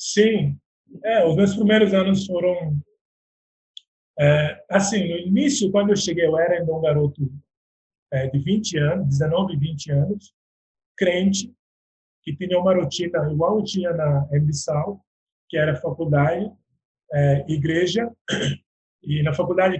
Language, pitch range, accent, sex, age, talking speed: Portuguese, 145-185 Hz, Brazilian, male, 20-39, 135 wpm